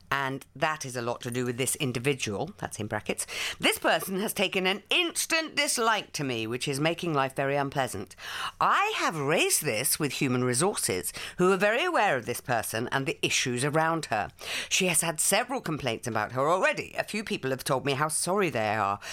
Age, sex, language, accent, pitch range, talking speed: 50-69, female, English, British, 130-215 Hz, 205 wpm